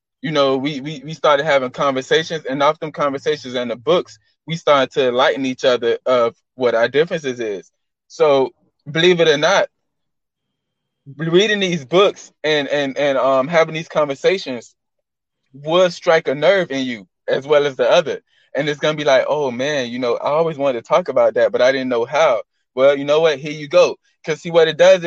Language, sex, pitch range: English, male, 145-180 Hz